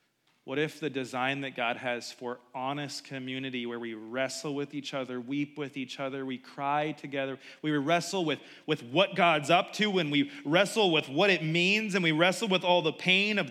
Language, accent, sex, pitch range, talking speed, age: English, American, male, 180-260 Hz, 205 wpm, 30-49